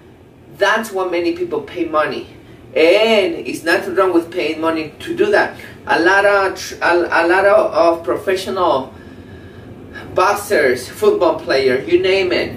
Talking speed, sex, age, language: 145 wpm, male, 30-49, English